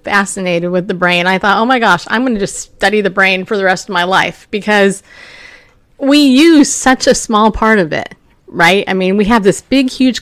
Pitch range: 185-235 Hz